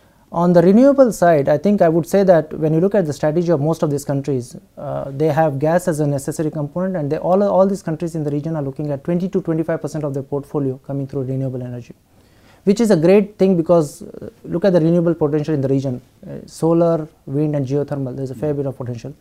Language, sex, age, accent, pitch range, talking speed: English, male, 20-39, Indian, 135-170 Hz, 235 wpm